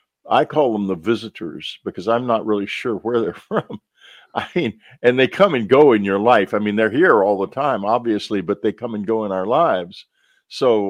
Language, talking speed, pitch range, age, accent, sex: English, 220 wpm, 95-125 Hz, 50-69, American, male